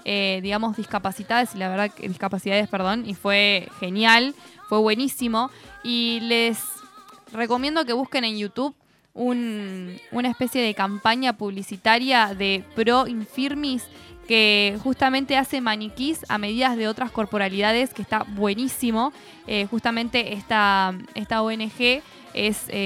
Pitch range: 205-260 Hz